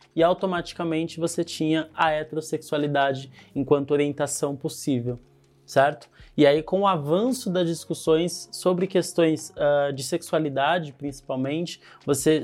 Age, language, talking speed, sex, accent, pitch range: 20-39, Portuguese, 110 wpm, male, Brazilian, 140-175 Hz